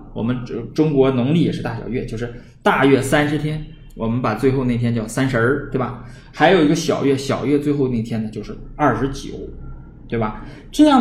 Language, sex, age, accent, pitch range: Chinese, male, 20-39, native, 120-155 Hz